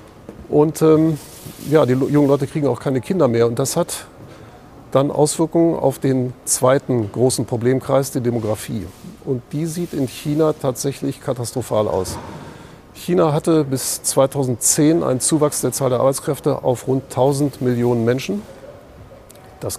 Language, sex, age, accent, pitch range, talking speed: German, male, 40-59, German, 125-150 Hz, 145 wpm